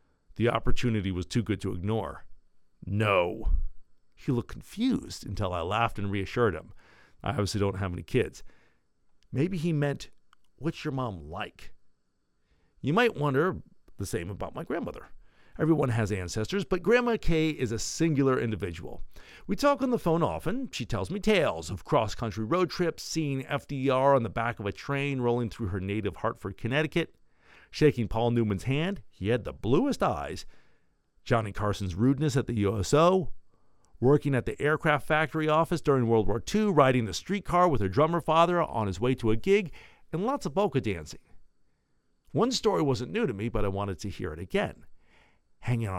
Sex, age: male, 50-69